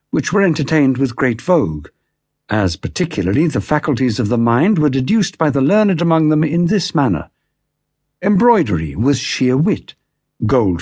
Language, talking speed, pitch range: English, 155 wpm, 125-180 Hz